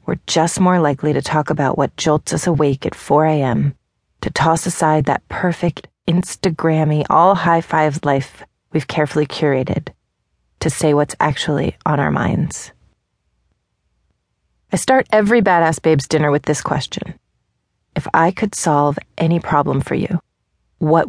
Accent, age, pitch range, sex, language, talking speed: American, 30-49, 145-175 Hz, female, English, 145 wpm